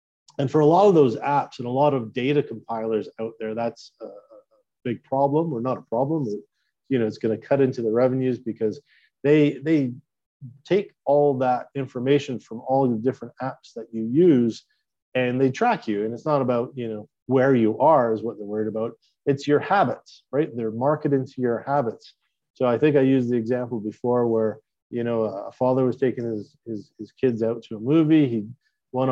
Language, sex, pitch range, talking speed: English, male, 110-135 Hz, 205 wpm